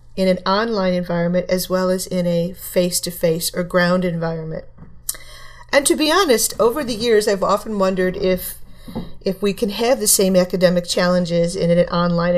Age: 40-59